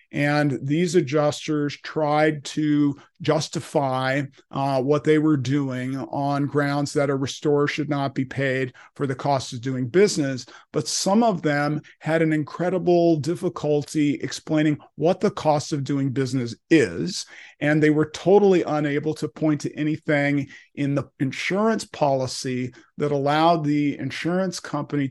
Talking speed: 145 wpm